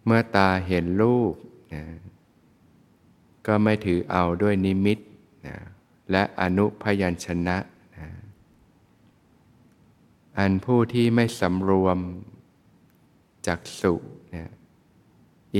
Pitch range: 85-105 Hz